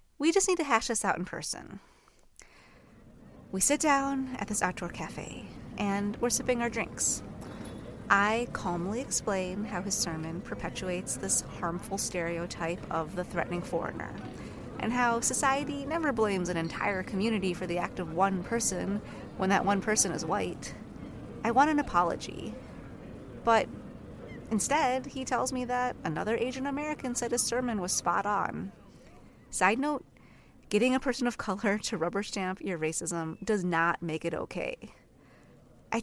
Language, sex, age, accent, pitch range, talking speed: English, female, 30-49, American, 180-245 Hz, 155 wpm